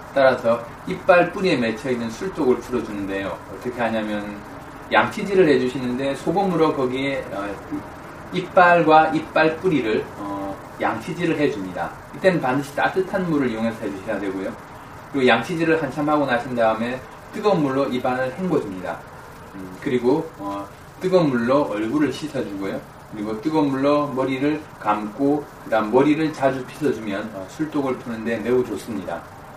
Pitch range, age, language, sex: 110-150 Hz, 20-39, Korean, male